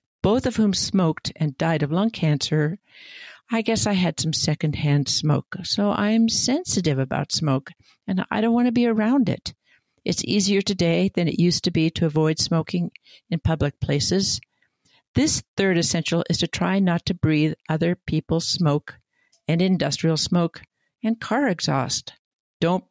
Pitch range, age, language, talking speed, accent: 155-195 Hz, 60-79, English, 160 wpm, American